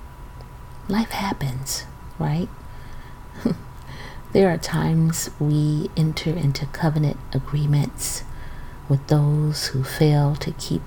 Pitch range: 125-150 Hz